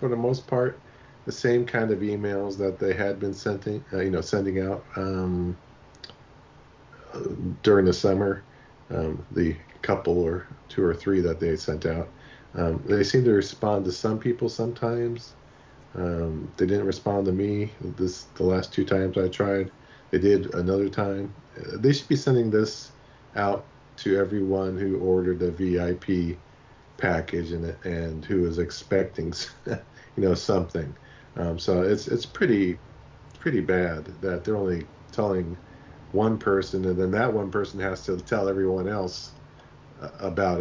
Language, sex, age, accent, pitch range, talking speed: English, male, 40-59, American, 90-110 Hz, 155 wpm